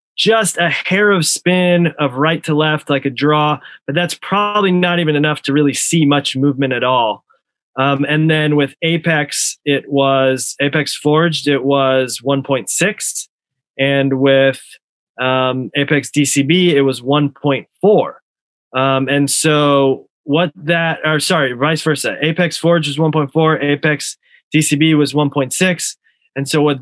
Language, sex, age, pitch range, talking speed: English, male, 20-39, 140-160 Hz, 145 wpm